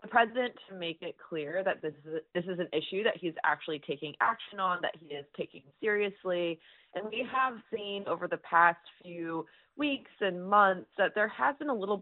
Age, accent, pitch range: 20-39, American, 155-185 Hz